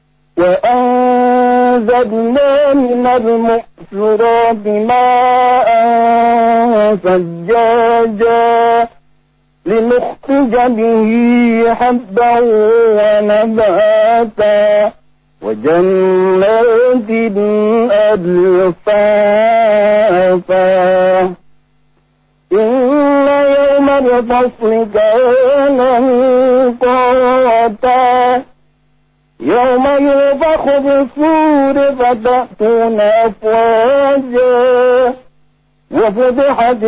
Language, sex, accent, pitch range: Indonesian, male, American, 210-250 Hz